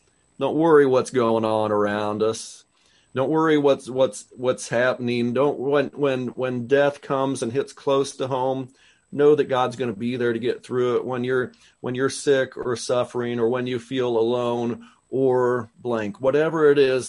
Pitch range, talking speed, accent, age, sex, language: 110-130 Hz, 180 wpm, American, 40-59, male, English